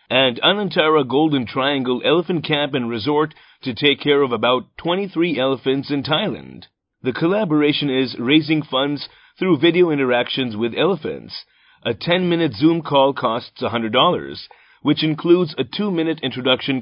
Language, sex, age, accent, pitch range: Japanese, male, 30-49, American, 130-160 Hz